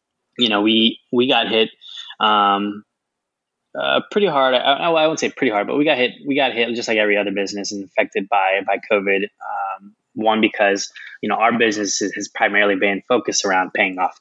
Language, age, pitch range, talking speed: English, 10-29, 95-110 Hz, 210 wpm